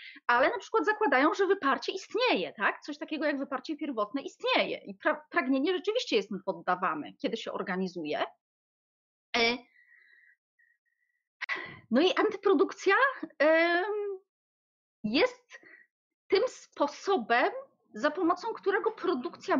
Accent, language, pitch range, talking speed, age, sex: native, Polish, 245-375 Hz, 100 wpm, 30-49, female